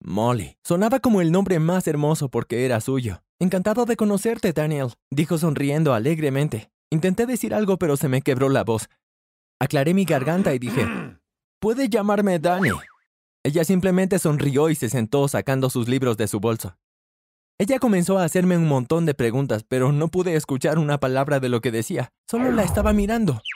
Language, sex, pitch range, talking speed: Spanish, male, 125-185 Hz, 175 wpm